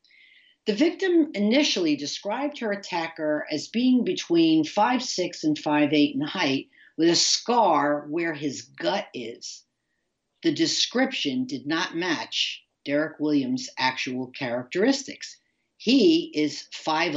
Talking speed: 110 wpm